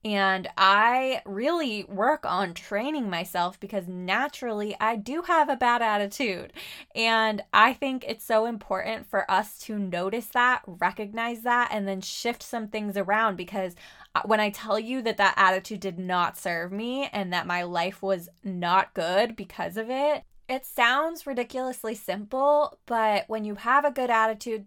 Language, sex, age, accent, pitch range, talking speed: English, female, 20-39, American, 180-225 Hz, 165 wpm